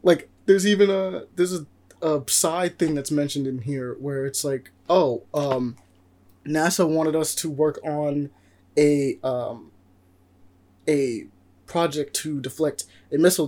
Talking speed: 140 wpm